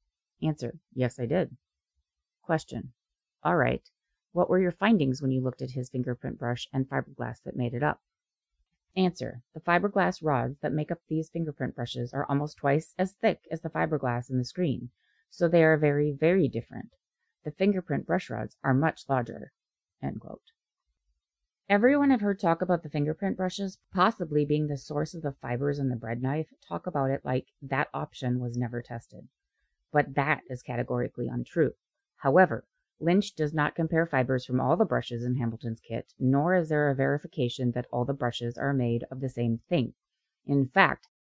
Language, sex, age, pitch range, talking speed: English, female, 30-49, 125-165 Hz, 175 wpm